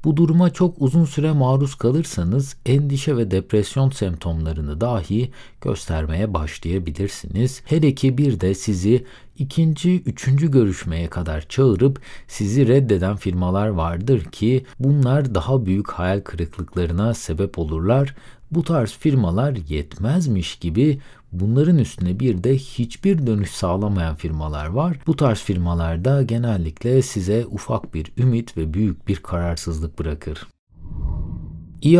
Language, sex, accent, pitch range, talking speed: Turkish, male, native, 95-140 Hz, 120 wpm